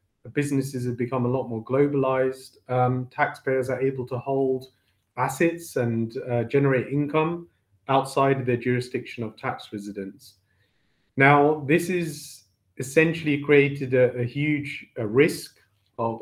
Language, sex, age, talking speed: English, male, 30-49, 135 wpm